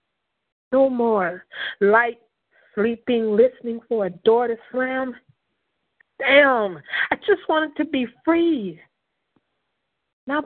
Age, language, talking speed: 50-69, English, 105 wpm